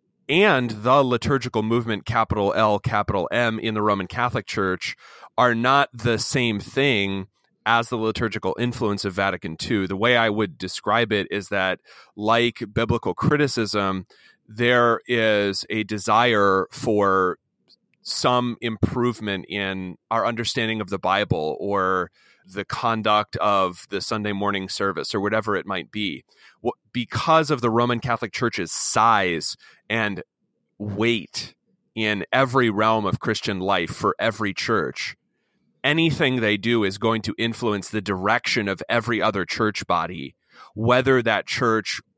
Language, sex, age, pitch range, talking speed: English, male, 30-49, 100-120 Hz, 140 wpm